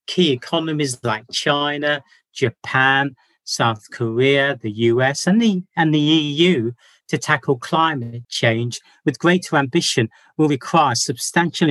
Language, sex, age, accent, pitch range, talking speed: English, male, 50-69, British, 115-145 Hz, 120 wpm